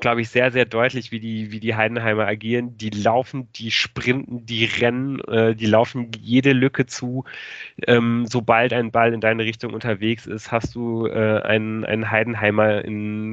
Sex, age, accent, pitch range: male, 30-49, German, 110-120 Hz